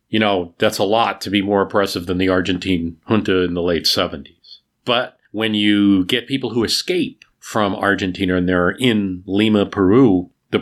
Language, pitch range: English, 90-110 Hz